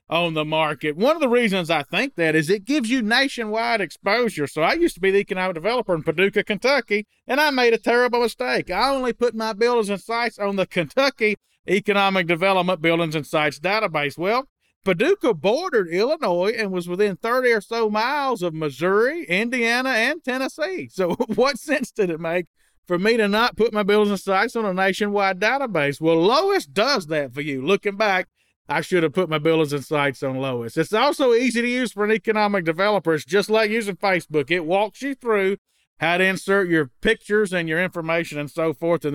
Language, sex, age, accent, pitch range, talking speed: English, male, 40-59, American, 165-230 Hz, 200 wpm